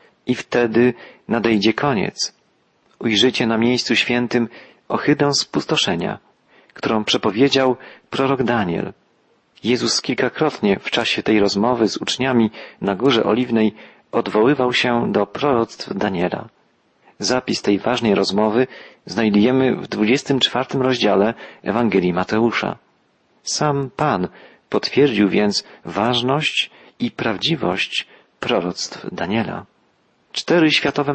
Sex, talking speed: male, 100 wpm